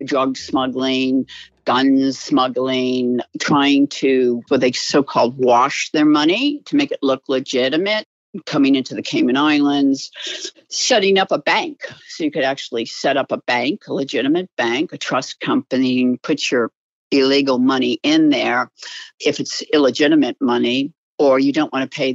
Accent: American